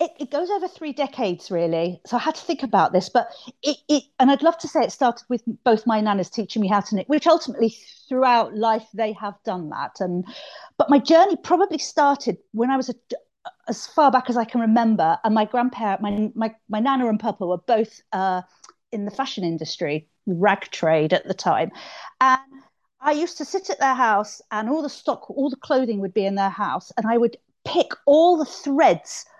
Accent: British